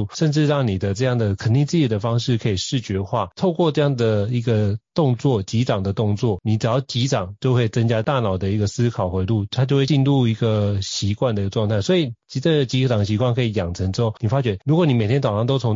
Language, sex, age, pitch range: Chinese, male, 30-49, 100-130 Hz